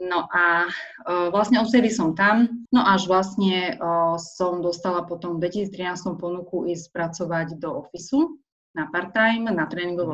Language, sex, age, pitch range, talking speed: Slovak, female, 30-49, 170-195 Hz, 150 wpm